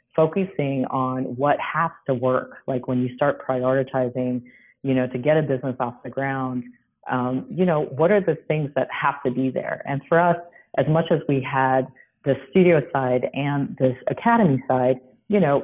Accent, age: American, 40-59